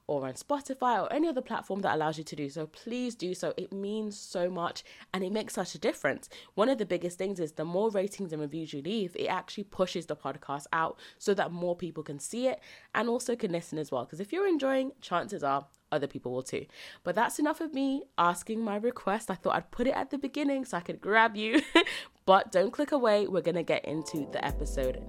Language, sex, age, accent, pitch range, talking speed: English, female, 20-39, British, 155-220 Hz, 235 wpm